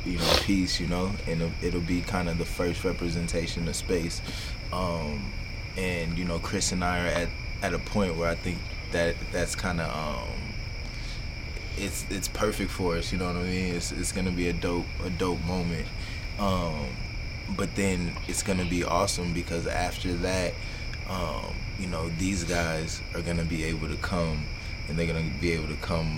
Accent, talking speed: American, 200 wpm